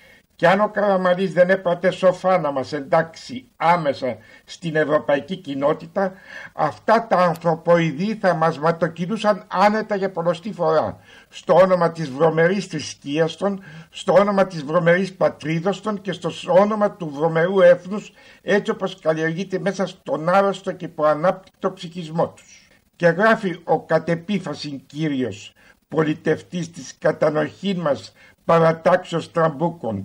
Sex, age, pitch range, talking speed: male, 60-79, 145-190 Hz, 125 wpm